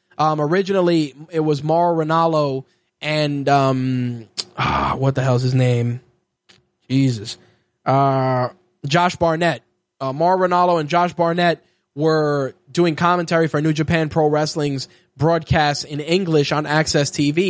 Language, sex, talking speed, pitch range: English, male, 135 wpm, 145-170 Hz